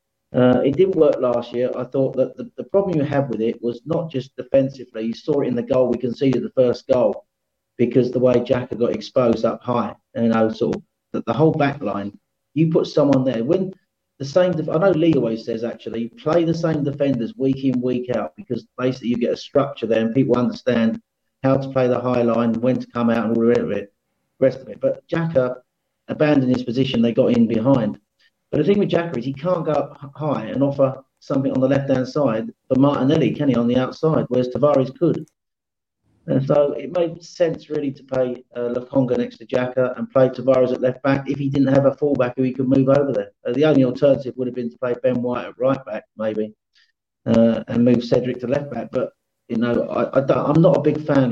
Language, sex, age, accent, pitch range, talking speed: English, male, 40-59, British, 120-140 Hz, 225 wpm